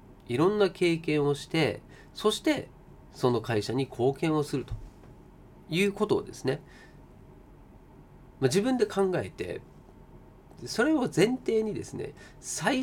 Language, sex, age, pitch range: Japanese, male, 40-59, 125-210 Hz